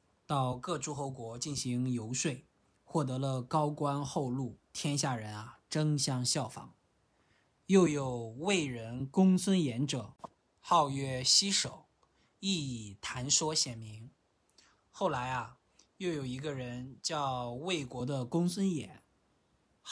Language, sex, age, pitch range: Chinese, male, 20-39, 125-160 Hz